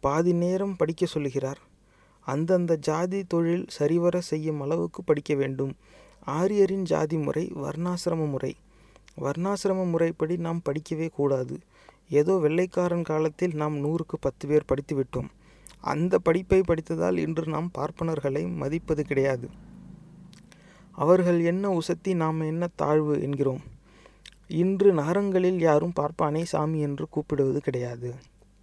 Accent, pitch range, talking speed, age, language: Indian, 150-180 Hz, 110 wpm, 30-49, English